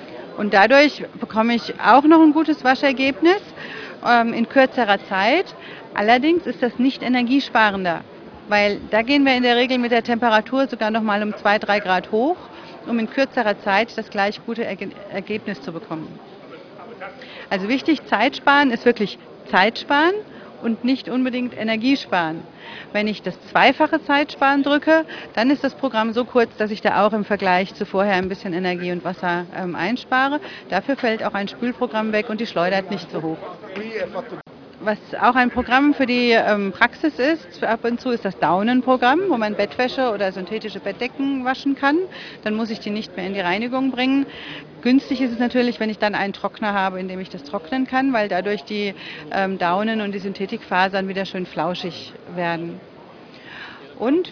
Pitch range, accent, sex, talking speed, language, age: 195-255 Hz, German, female, 180 wpm, German, 40-59